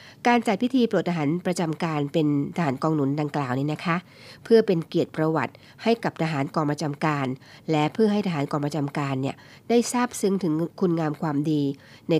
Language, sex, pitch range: Thai, female, 145-180 Hz